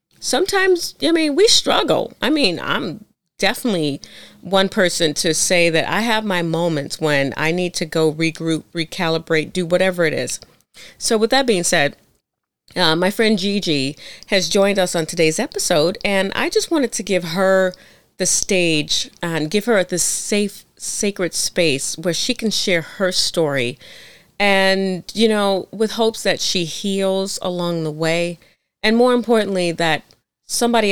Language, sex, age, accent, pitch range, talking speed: English, female, 40-59, American, 165-220 Hz, 160 wpm